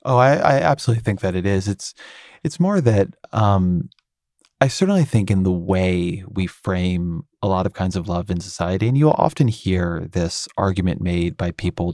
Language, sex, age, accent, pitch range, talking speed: English, male, 30-49, American, 95-110 Hz, 190 wpm